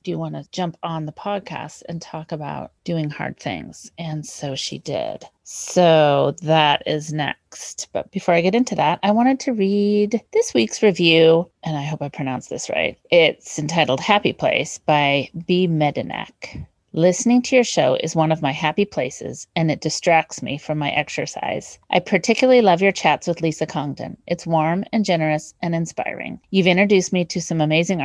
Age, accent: 30-49, American